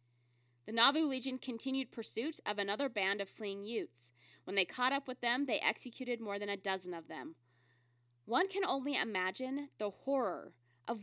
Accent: American